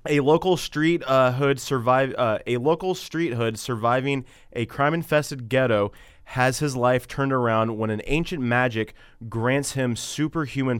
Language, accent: English, American